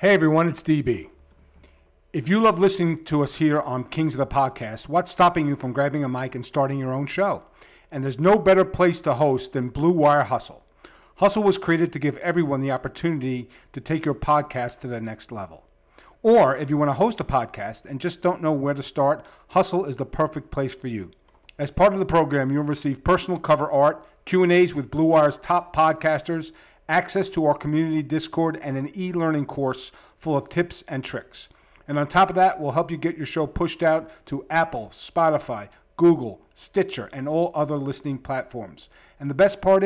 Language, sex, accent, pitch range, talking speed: English, male, American, 135-170 Hz, 200 wpm